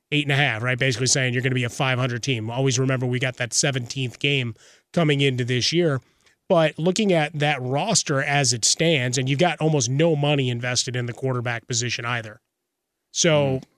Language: English